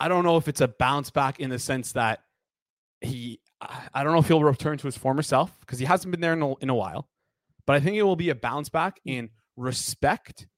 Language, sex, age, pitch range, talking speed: English, male, 20-39, 120-150 Hz, 250 wpm